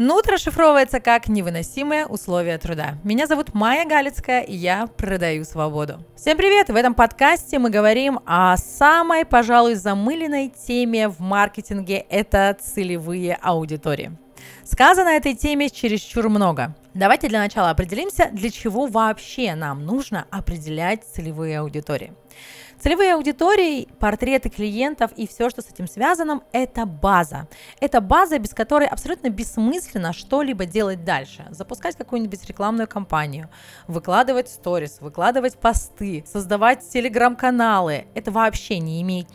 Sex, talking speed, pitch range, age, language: female, 130 wpm, 175-255 Hz, 30-49, Russian